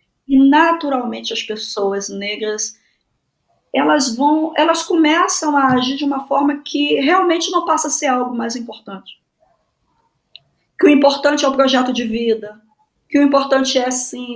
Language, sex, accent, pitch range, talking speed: Portuguese, female, Brazilian, 230-295 Hz, 150 wpm